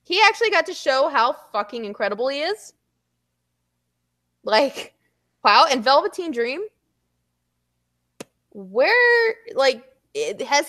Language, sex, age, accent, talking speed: English, female, 20-39, American, 100 wpm